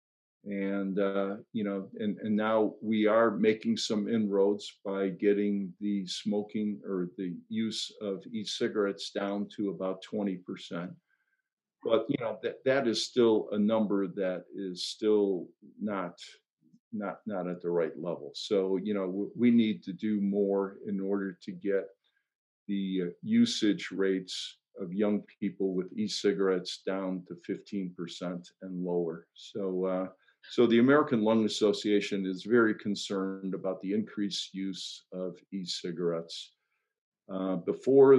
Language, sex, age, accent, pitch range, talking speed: English, male, 50-69, American, 95-110 Hz, 135 wpm